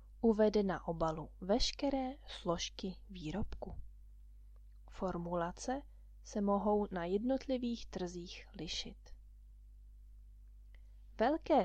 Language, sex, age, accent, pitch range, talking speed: Czech, female, 20-39, native, 165-225 Hz, 70 wpm